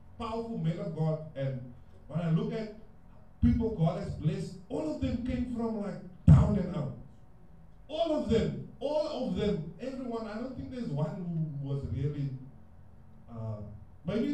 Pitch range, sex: 155-240 Hz, male